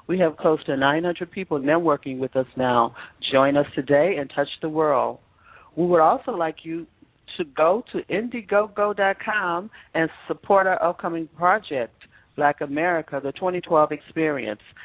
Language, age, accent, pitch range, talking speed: English, 50-69, American, 140-170 Hz, 145 wpm